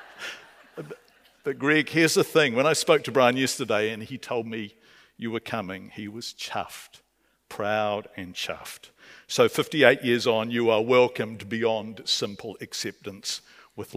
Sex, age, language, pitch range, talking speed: male, 50-69, English, 110-130 Hz, 150 wpm